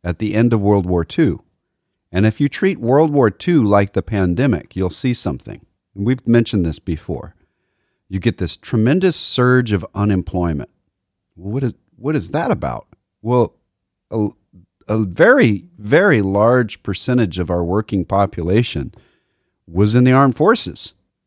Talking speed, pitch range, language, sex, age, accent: 150 wpm, 95-140 Hz, English, male, 40-59, American